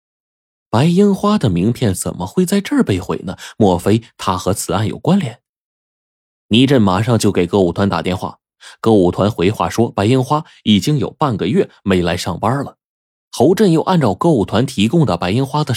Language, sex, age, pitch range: Chinese, male, 20-39, 90-140 Hz